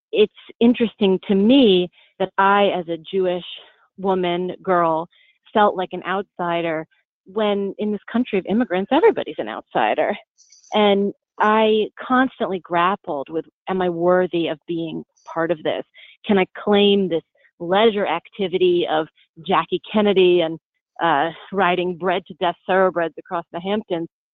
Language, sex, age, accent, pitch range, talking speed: English, female, 30-49, American, 170-205 Hz, 140 wpm